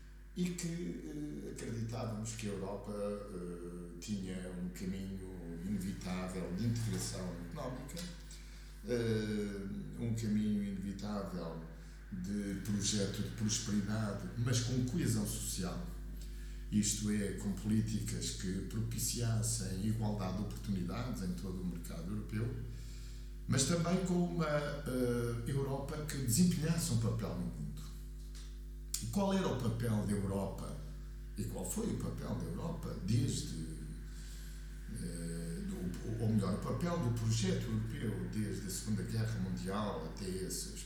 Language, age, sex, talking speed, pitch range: Portuguese, 50-69, male, 115 wpm, 100-120 Hz